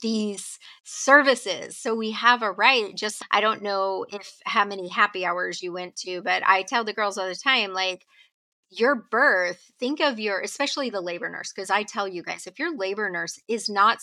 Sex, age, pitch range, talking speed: female, 30-49, 185-255 Hz, 205 wpm